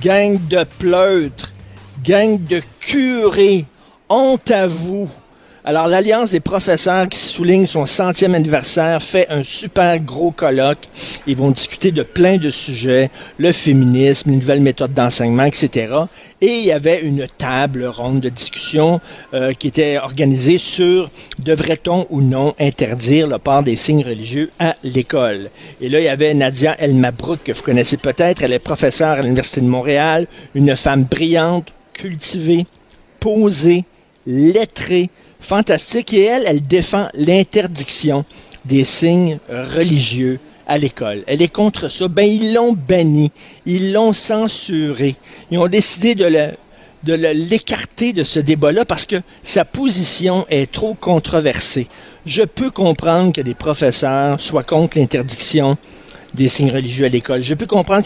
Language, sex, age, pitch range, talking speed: French, male, 50-69, 140-180 Hz, 150 wpm